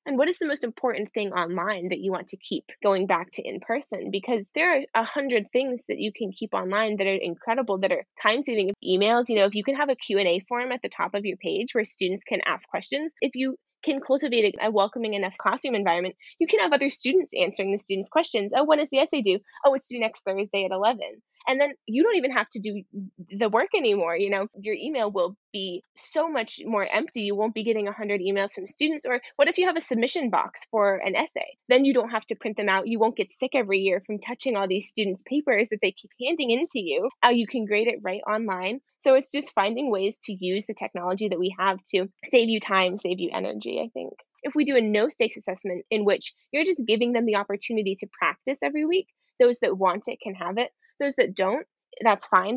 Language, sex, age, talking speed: English, female, 10-29, 245 wpm